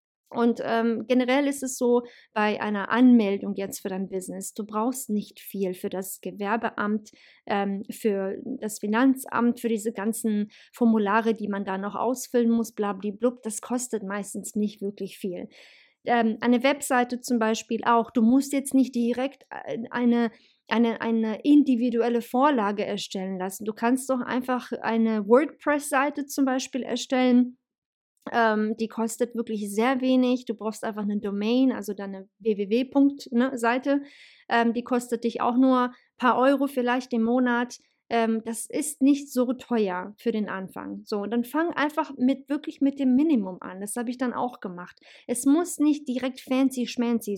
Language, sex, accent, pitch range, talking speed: German, female, German, 215-255 Hz, 160 wpm